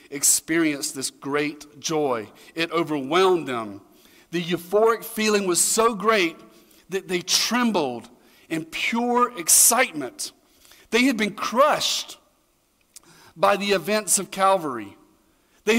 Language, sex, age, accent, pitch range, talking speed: English, male, 40-59, American, 135-195 Hz, 110 wpm